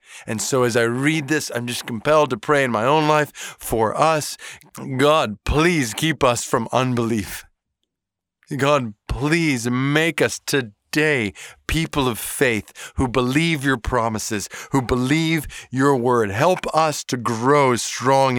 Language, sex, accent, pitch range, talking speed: English, male, American, 125-165 Hz, 145 wpm